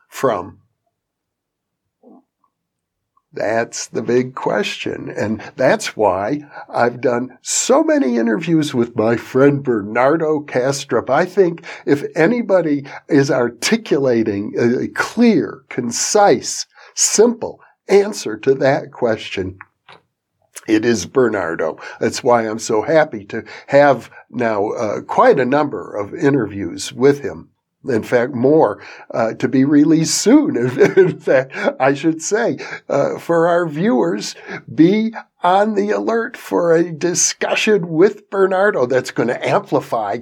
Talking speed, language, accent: 120 wpm, English, American